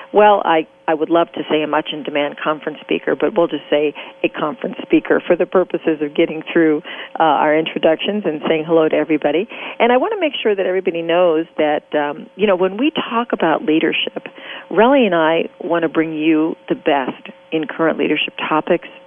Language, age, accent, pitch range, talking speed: English, 40-59, American, 150-205 Hz, 200 wpm